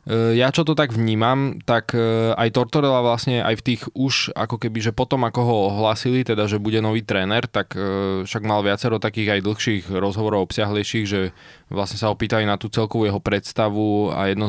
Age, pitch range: 20-39, 105-120 Hz